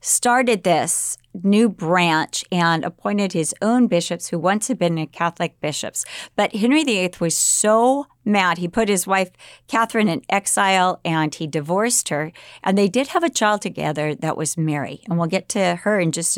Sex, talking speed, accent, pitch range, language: female, 185 wpm, American, 170-220 Hz, English